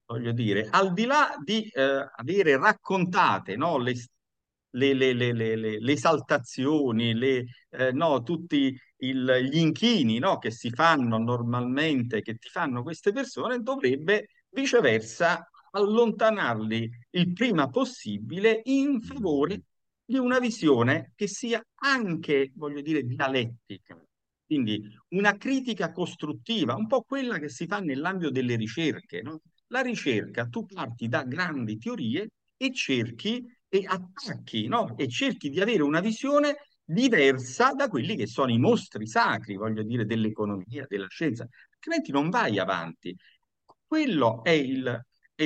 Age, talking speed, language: 50-69, 135 wpm, Italian